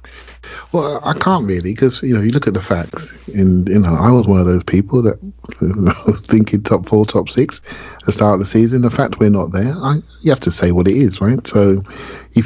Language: English